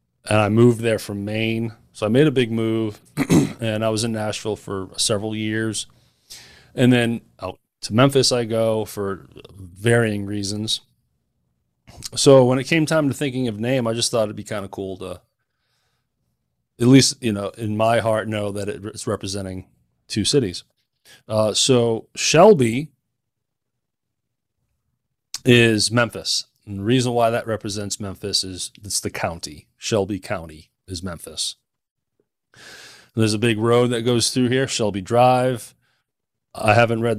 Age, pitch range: 30-49, 105-125 Hz